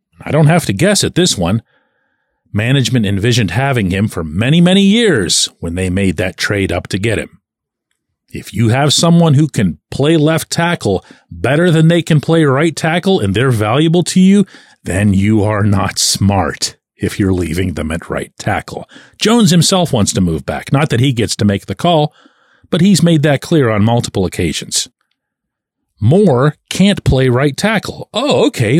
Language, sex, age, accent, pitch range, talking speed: English, male, 40-59, American, 105-170 Hz, 180 wpm